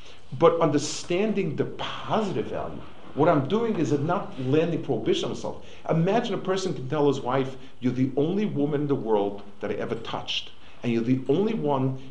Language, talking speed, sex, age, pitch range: English, 190 wpm, male, 50-69, 115-150 Hz